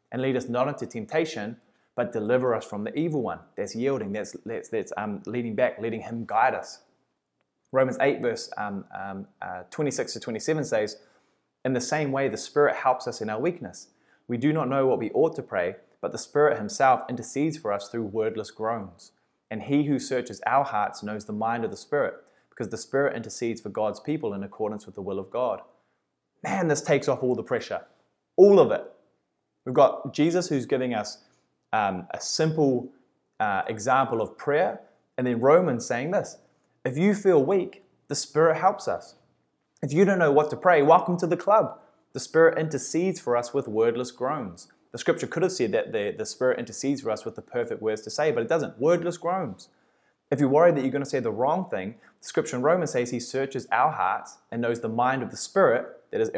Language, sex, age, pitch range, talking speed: English, male, 20-39, 115-155 Hz, 210 wpm